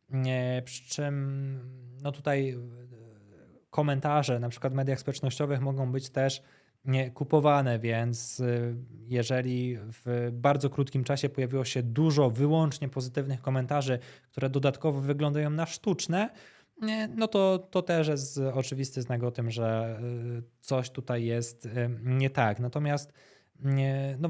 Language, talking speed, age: Polish, 130 wpm, 20-39